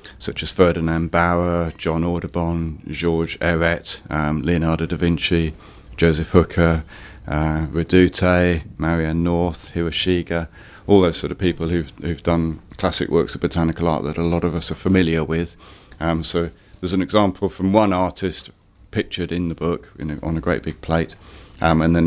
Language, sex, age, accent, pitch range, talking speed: English, male, 30-49, British, 80-90 Hz, 170 wpm